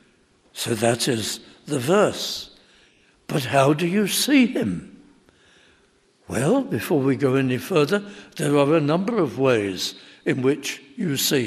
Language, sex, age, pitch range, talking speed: English, male, 60-79, 135-190 Hz, 140 wpm